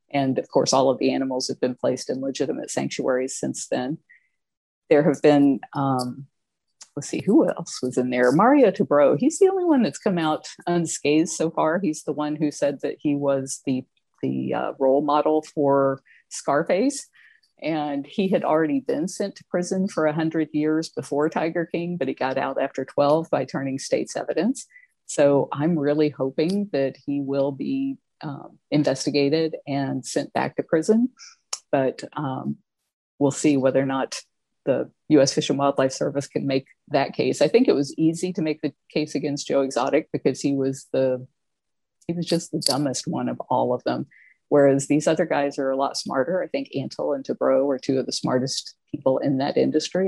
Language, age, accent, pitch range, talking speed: English, 50-69, American, 135-160 Hz, 190 wpm